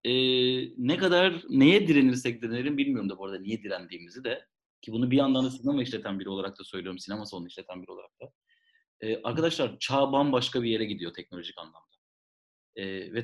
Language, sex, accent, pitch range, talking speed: Turkish, male, native, 115-150 Hz, 185 wpm